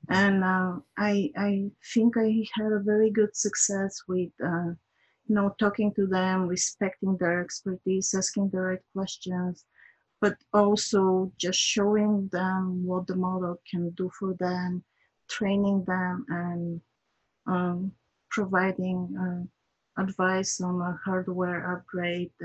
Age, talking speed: 30-49, 130 wpm